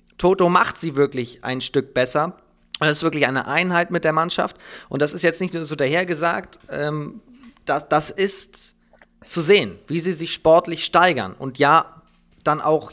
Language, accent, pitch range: German, German, 135-170 Hz